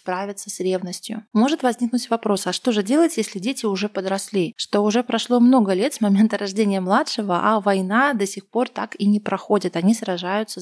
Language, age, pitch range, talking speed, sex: Russian, 20-39, 195-235 Hz, 190 wpm, female